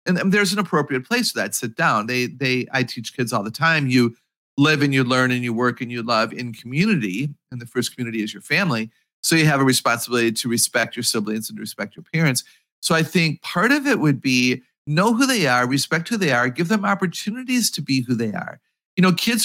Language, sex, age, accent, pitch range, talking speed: English, male, 40-59, American, 130-195 Hz, 240 wpm